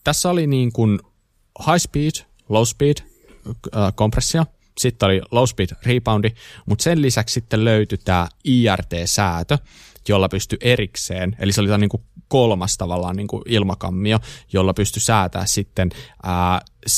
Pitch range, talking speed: 95-120 Hz, 140 wpm